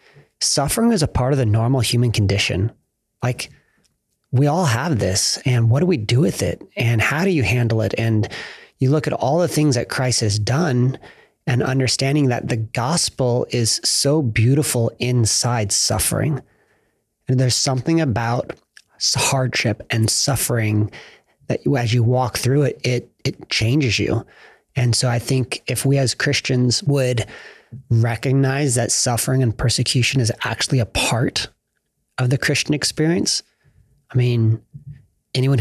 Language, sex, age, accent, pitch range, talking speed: English, male, 30-49, American, 115-135 Hz, 150 wpm